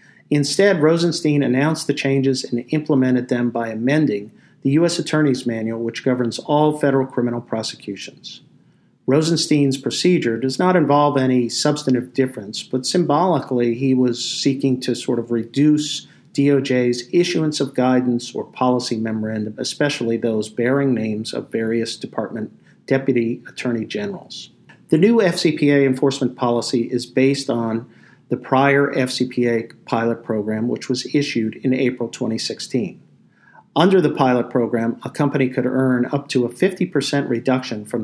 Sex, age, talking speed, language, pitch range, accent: male, 50-69, 135 wpm, English, 115-140 Hz, American